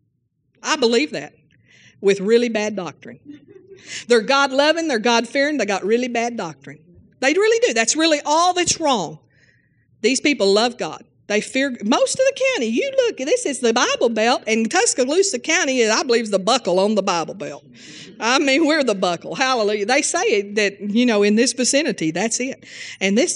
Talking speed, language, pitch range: 190 wpm, English, 195-270 Hz